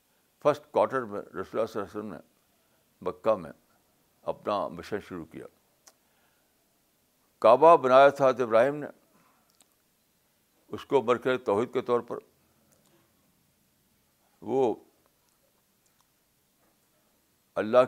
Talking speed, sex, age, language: 90 wpm, male, 60-79, Urdu